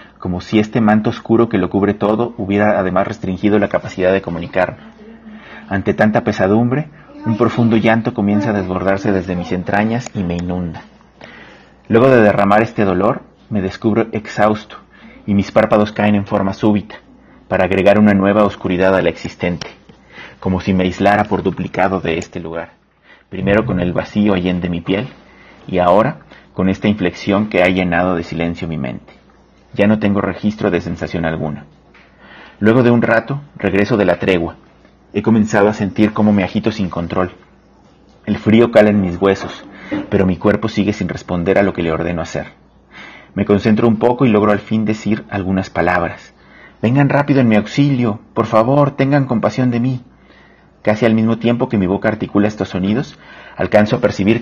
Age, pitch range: 40-59, 95-110 Hz